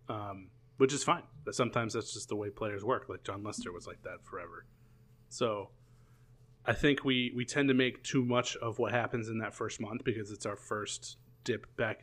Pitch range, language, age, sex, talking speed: 110-125 Hz, English, 30-49, male, 205 wpm